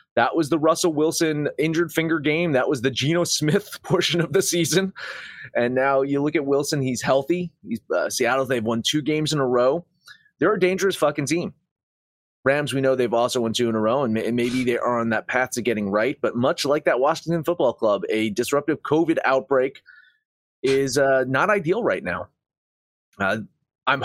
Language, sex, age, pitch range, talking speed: English, male, 30-49, 115-155 Hz, 195 wpm